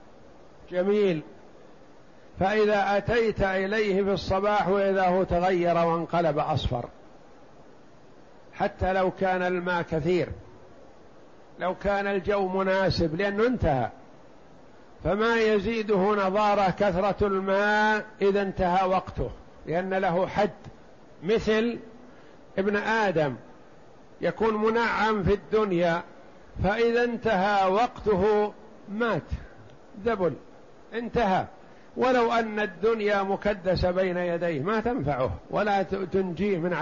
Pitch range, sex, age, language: 185-215 Hz, male, 60-79, Arabic